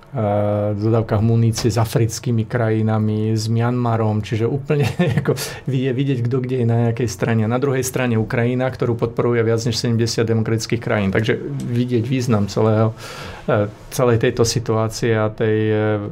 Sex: male